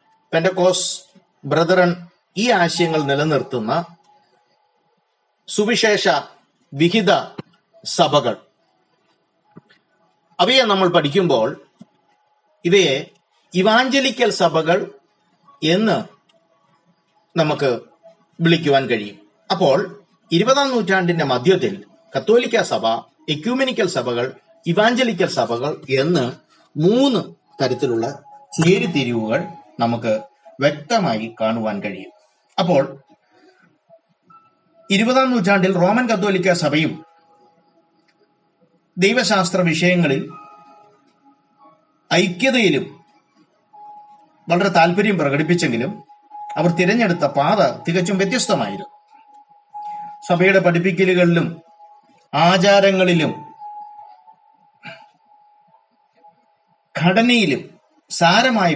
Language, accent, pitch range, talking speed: Malayalam, native, 165-235 Hz, 60 wpm